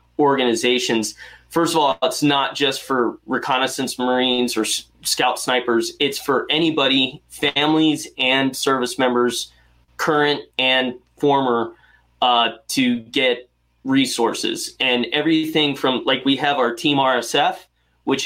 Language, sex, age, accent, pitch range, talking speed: English, male, 20-39, American, 125-145 Hz, 120 wpm